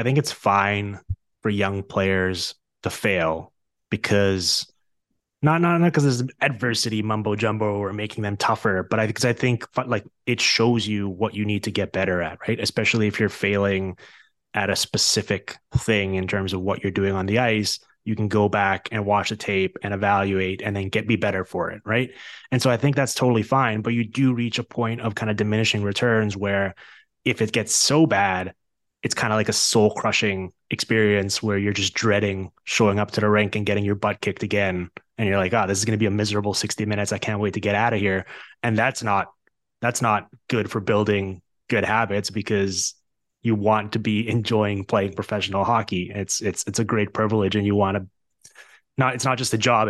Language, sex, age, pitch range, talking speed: English, male, 20-39, 100-115 Hz, 210 wpm